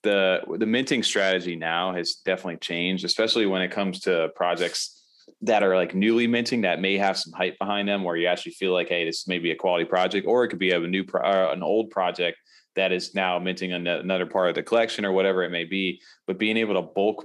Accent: American